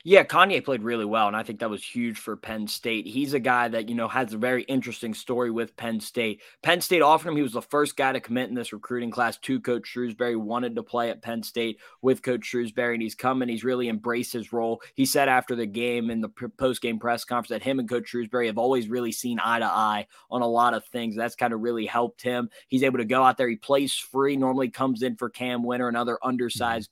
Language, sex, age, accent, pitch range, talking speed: English, male, 20-39, American, 115-130 Hz, 255 wpm